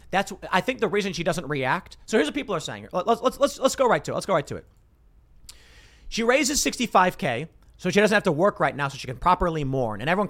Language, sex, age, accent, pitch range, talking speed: English, male, 40-59, American, 140-195 Hz, 255 wpm